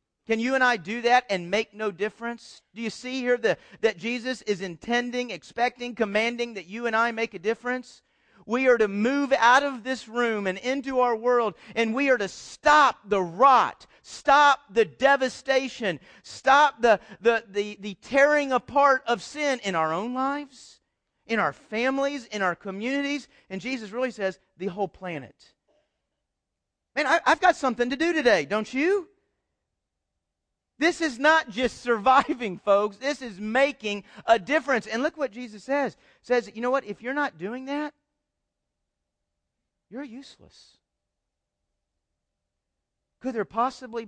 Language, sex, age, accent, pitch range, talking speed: English, male, 40-59, American, 175-255 Hz, 160 wpm